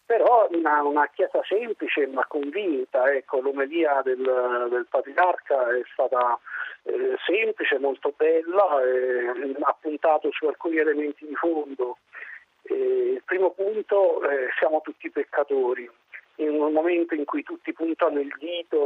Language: Italian